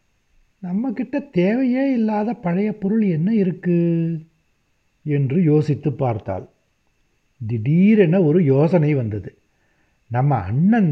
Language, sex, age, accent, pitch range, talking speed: Tamil, male, 60-79, native, 135-190 Hz, 90 wpm